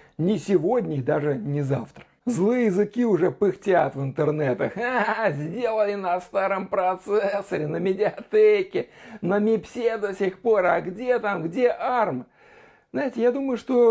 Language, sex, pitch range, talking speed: Russian, male, 160-225 Hz, 140 wpm